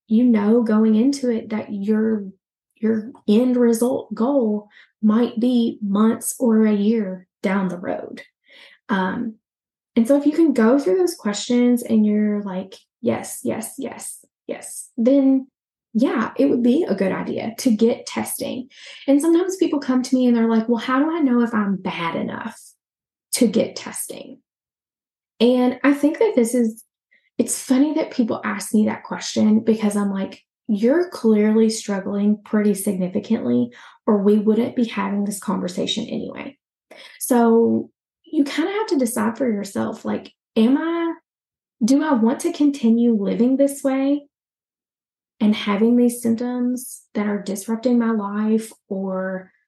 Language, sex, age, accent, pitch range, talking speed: English, female, 10-29, American, 210-255 Hz, 155 wpm